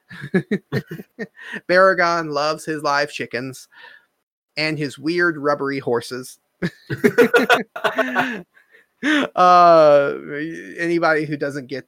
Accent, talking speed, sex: American, 75 wpm, male